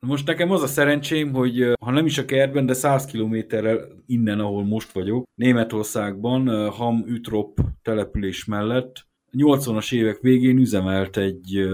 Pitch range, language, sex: 100-120 Hz, Hungarian, male